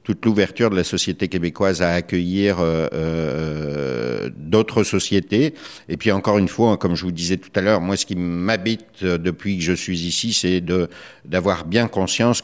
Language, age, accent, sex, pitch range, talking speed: French, 50-69, French, male, 90-110 Hz, 185 wpm